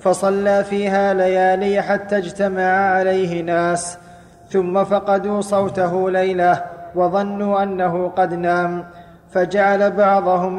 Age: 20-39